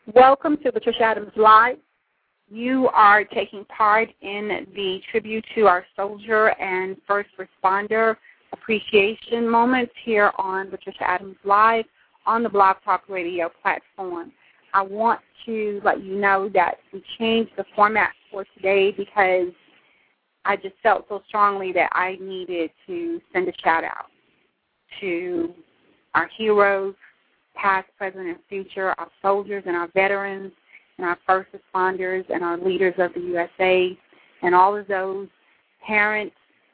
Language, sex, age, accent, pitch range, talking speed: English, female, 40-59, American, 185-215 Hz, 135 wpm